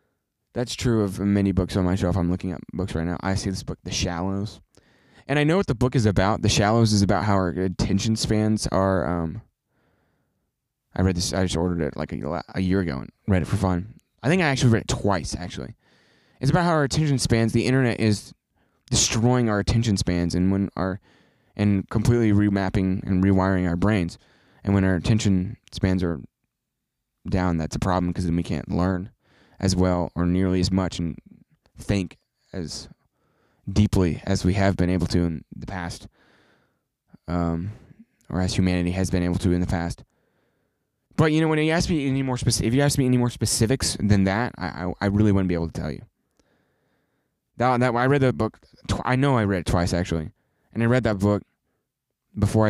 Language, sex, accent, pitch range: English, male, American, 90-115 Hz